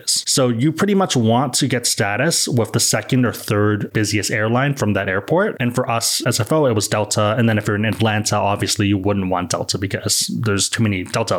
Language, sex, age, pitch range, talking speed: English, male, 20-39, 105-125 Hz, 215 wpm